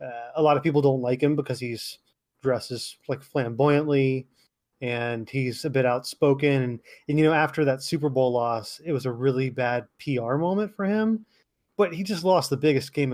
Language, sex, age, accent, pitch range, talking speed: English, male, 30-49, American, 120-150 Hz, 195 wpm